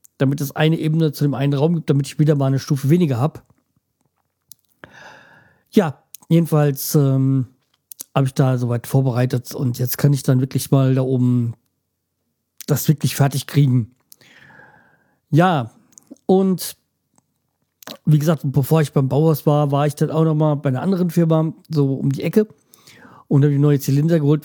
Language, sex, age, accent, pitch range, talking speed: German, male, 40-59, German, 130-155 Hz, 160 wpm